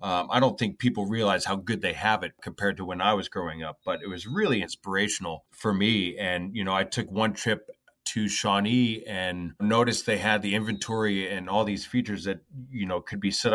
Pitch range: 90-110 Hz